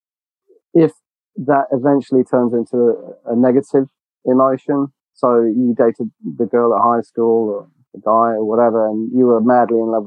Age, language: 40-59, English